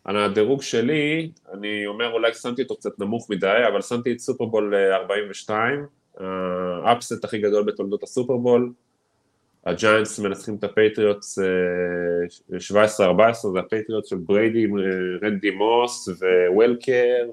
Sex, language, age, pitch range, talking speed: male, Hebrew, 20-39, 100-125 Hz, 110 wpm